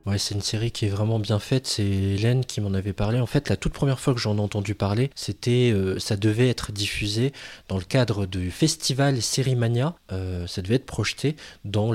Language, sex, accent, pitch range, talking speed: French, male, French, 100-125 Hz, 225 wpm